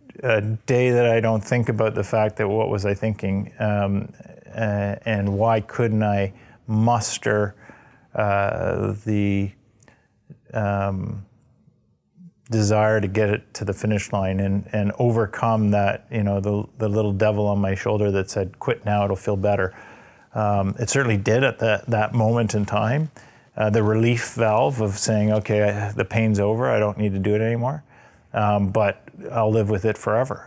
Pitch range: 100-115 Hz